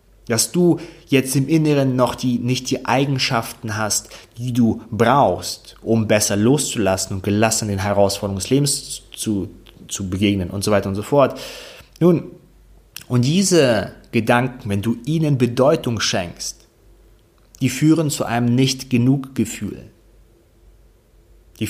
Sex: male